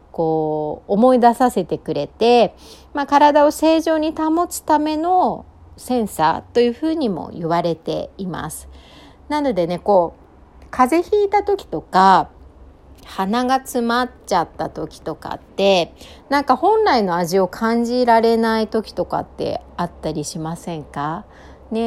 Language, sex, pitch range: Japanese, female, 170-255 Hz